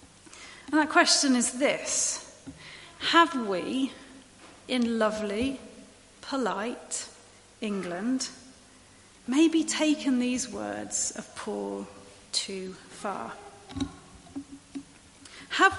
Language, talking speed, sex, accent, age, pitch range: English, 75 wpm, female, British, 40-59, 225-310 Hz